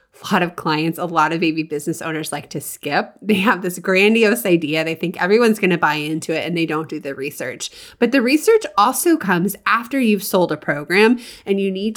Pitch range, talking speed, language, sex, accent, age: 170-240 Hz, 225 wpm, English, female, American, 20-39